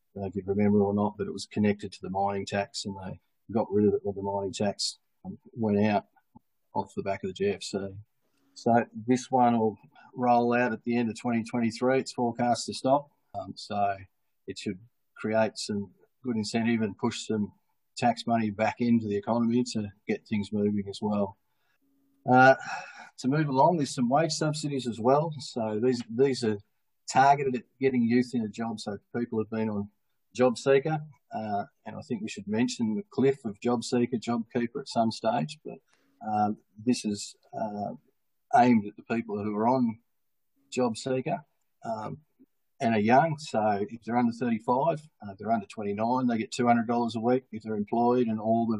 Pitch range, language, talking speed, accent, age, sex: 105-130 Hz, English, 195 wpm, Australian, 40-59, male